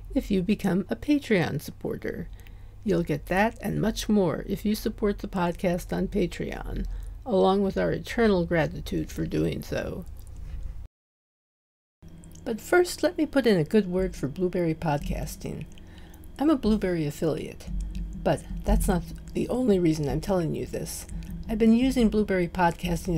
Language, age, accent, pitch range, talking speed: English, 50-69, American, 155-205 Hz, 150 wpm